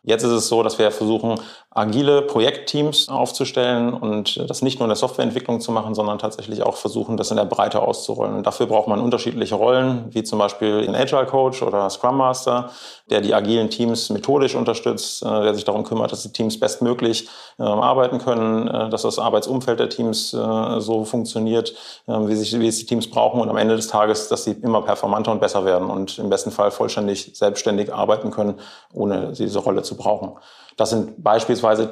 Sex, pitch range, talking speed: male, 105-120 Hz, 190 wpm